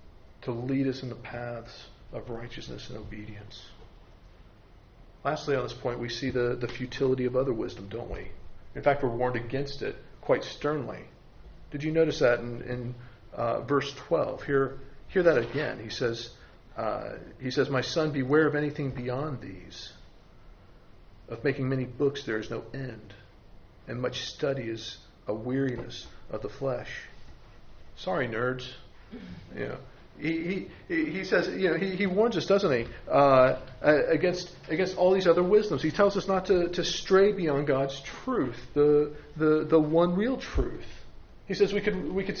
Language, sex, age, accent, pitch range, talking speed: English, male, 40-59, American, 120-175 Hz, 170 wpm